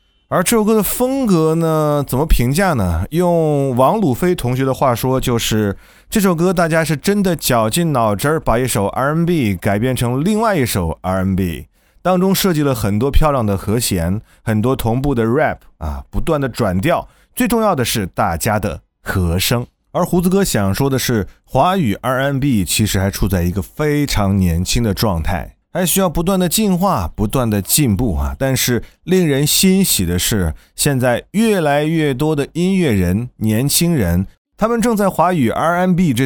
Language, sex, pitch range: Chinese, male, 100-165 Hz